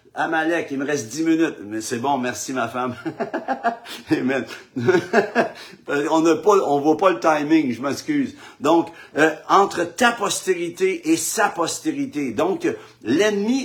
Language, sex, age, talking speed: French, male, 60-79, 130 wpm